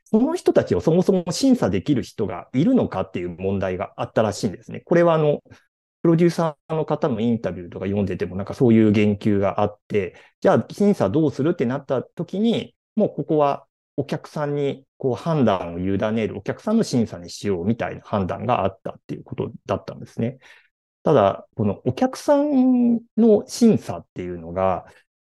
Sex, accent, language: male, native, Japanese